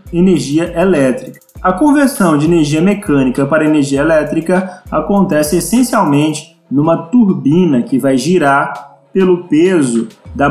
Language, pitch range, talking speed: Portuguese, 145-205 Hz, 115 wpm